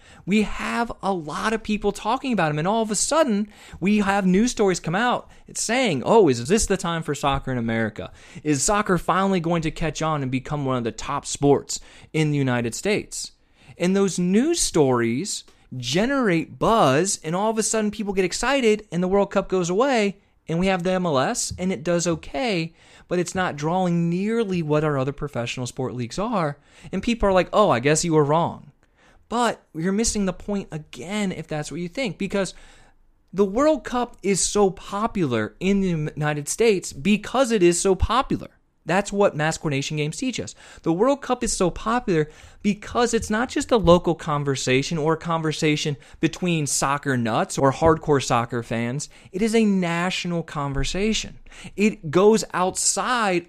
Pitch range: 150-205 Hz